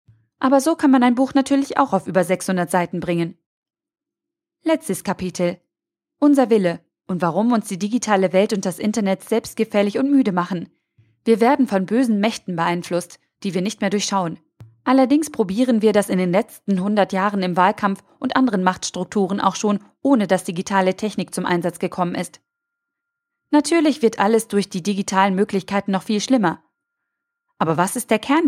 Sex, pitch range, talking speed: female, 190-255 Hz, 170 wpm